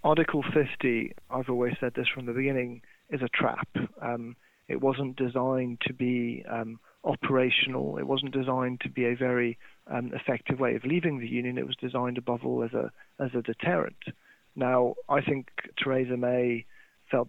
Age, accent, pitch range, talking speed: 30-49, British, 125-140 Hz, 175 wpm